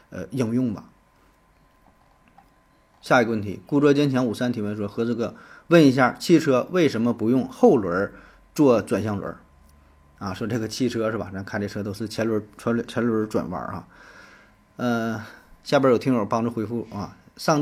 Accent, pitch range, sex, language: native, 110-140 Hz, male, Chinese